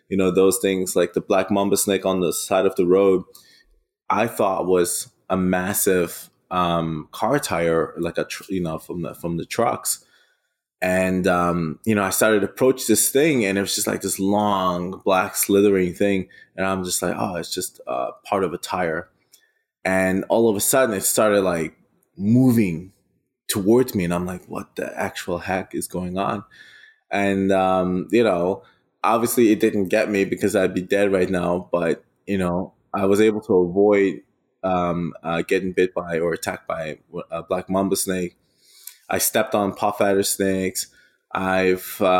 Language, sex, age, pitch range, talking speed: English, male, 20-39, 90-105 Hz, 180 wpm